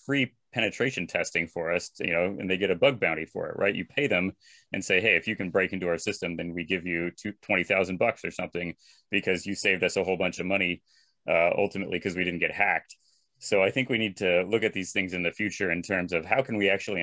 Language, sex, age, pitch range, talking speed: English, male, 30-49, 90-100 Hz, 265 wpm